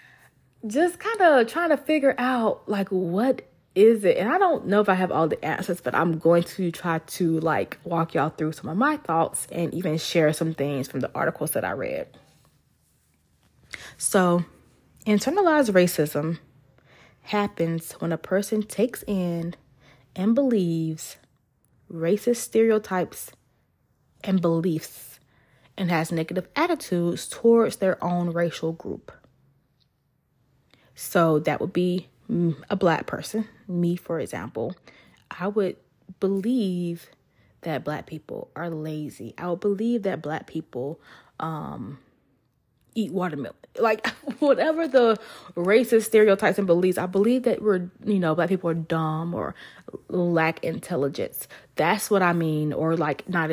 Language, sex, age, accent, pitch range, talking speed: English, female, 20-39, American, 160-205 Hz, 140 wpm